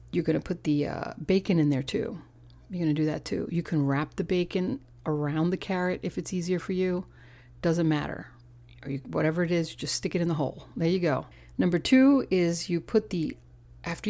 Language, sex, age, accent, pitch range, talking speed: English, female, 40-59, American, 140-175 Hz, 205 wpm